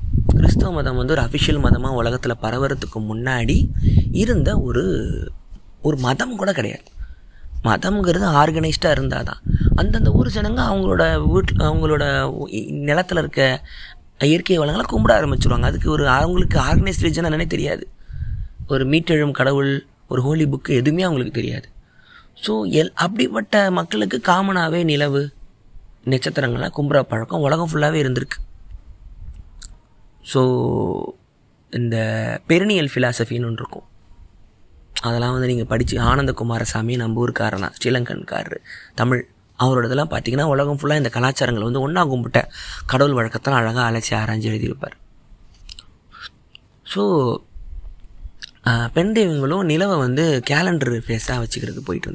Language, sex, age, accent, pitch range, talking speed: Tamil, male, 20-39, native, 110-150 Hz, 110 wpm